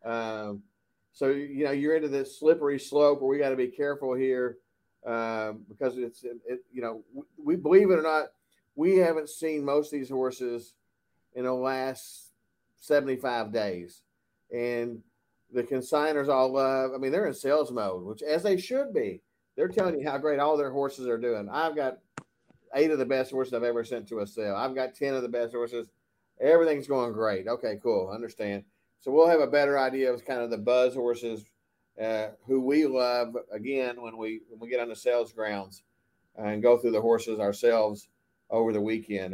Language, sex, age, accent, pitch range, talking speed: English, male, 40-59, American, 110-135 Hz, 195 wpm